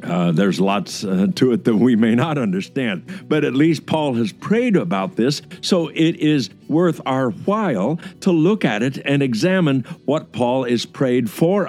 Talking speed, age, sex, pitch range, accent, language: 185 wpm, 60-79, male, 135-190 Hz, American, English